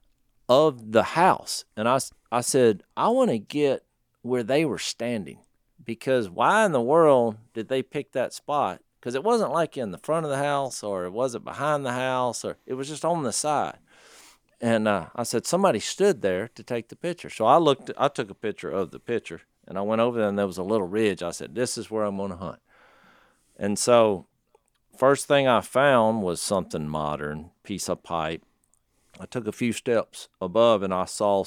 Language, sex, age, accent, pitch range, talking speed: English, male, 50-69, American, 95-125 Hz, 210 wpm